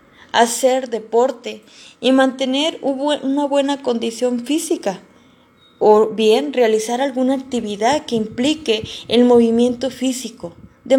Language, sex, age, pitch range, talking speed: Spanish, female, 20-39, 230-275 Hz, 105 wpm